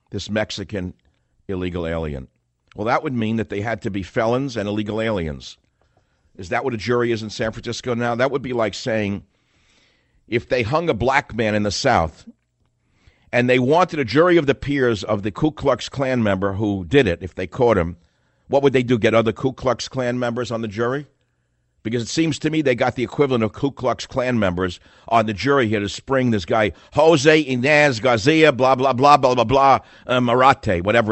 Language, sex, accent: English, male, American